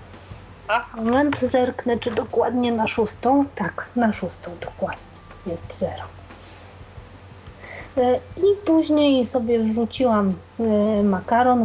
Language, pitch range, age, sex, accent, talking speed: Polish, 210-250 Hz, 30-49, female, native, 90 wpm